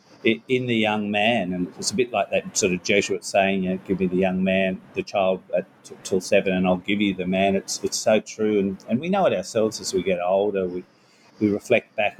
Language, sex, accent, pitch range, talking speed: English, male, Australian, 95-100 Hz, 250 wpm